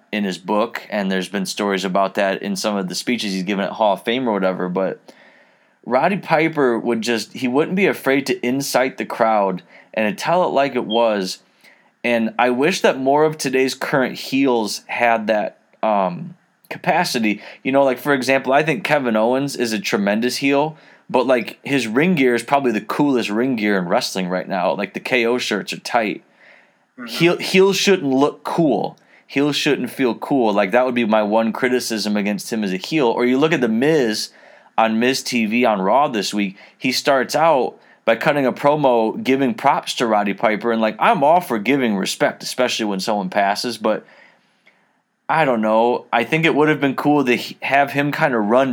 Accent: American